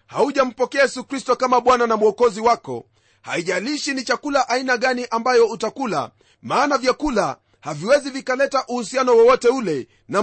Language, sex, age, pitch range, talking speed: Swahili, male, 40-59, 215-265 Hz, 135 wpm